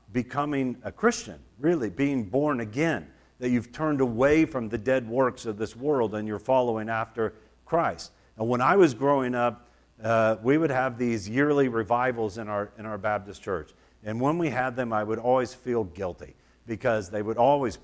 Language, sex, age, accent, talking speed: English, male, 50-69, American, 185 wpm